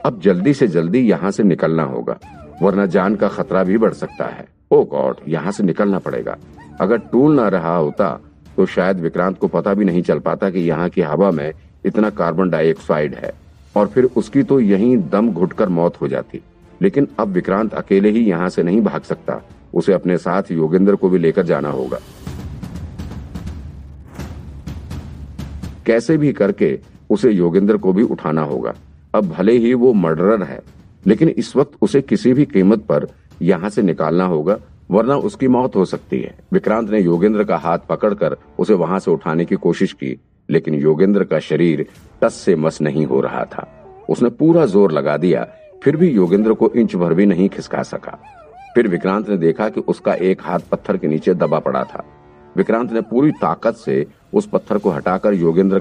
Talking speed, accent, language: 135 wpm, native, Hindi